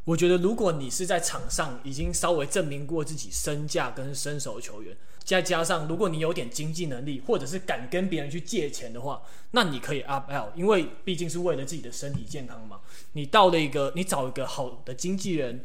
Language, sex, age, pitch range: Chinese, male, 20-39, 140-175 Hz